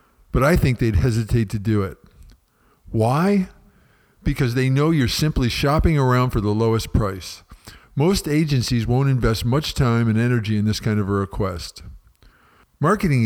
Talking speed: 160 wpm